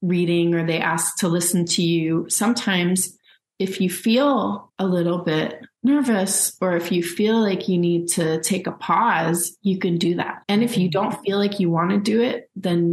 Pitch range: 170-210 Hz